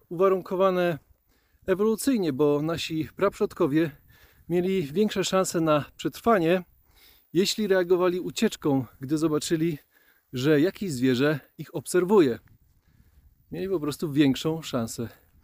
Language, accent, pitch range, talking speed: Polish, native, 135-195 Hz, 95 wpm